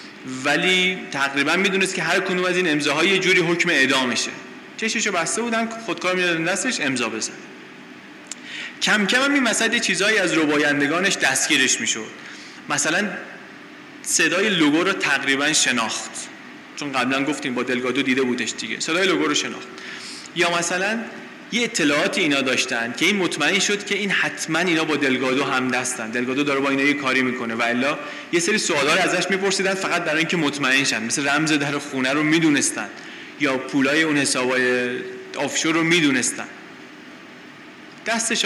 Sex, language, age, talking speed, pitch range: male, Persian, 30-49, 155 wpm, 135-225 Hz